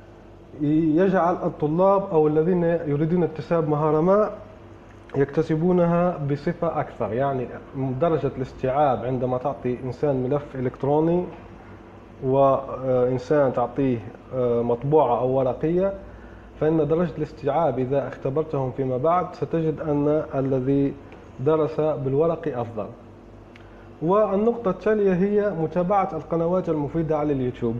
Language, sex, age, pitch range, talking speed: Arabic, male, 30-49, 130-165 Hz, 95 wpm